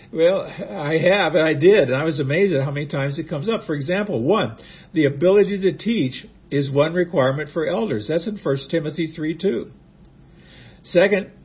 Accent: American